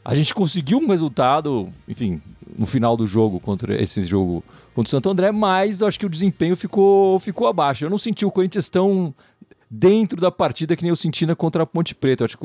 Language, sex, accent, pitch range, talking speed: Portuguese, male, Brazilian, 125-185 Hz, 225 wpm